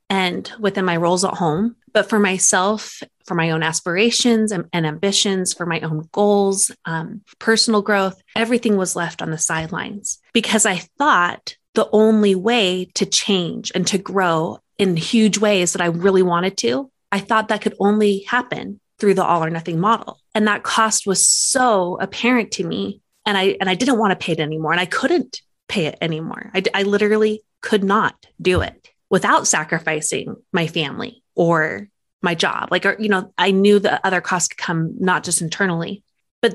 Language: English